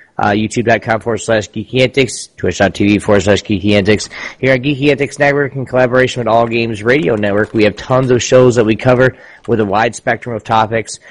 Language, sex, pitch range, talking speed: English, male, 110-135 Hz, 185 wpm